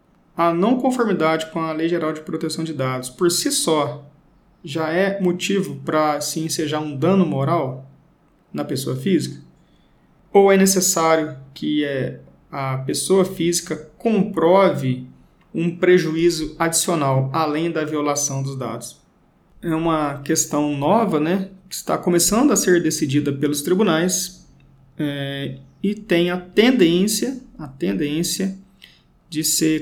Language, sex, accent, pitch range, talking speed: Portuguese, male, Brazilian, 150-190 Hz, 125 wpm